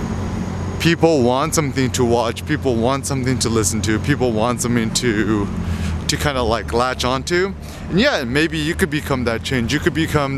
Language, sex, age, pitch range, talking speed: English, male, 20-39, 120-150 Hz, 180 wpm